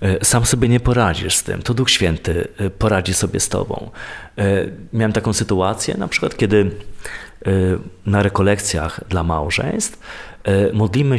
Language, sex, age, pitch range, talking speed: Polish, male, 30-49, 95-125 Hz, 130 wpm